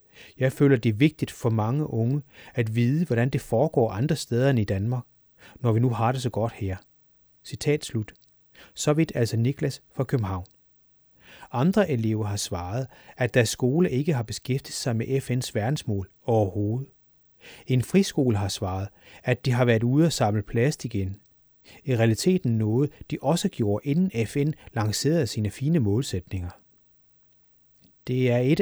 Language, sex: Danish, male